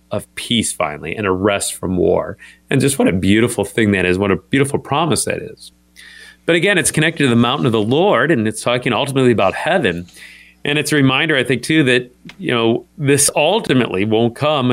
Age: 40-59